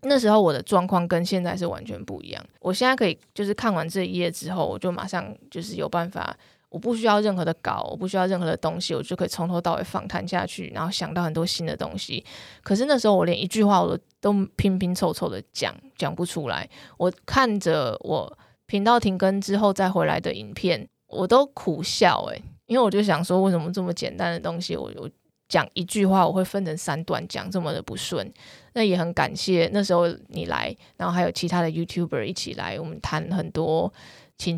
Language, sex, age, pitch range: Chinese, female, 20-39, 170-205 Hz